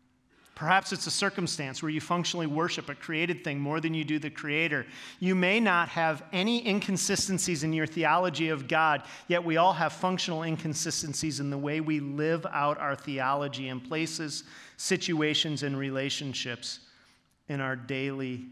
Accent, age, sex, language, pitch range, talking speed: American, 40-59, male, English, 140-170 Hz, 160 wpm